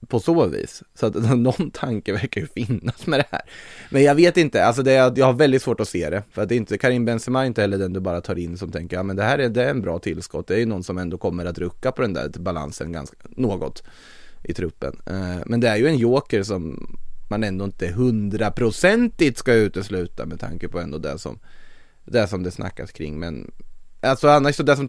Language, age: Swedish, 20-39